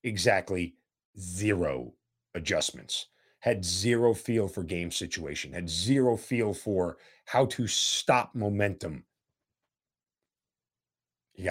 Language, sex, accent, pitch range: English, male, American, 90-125 Hz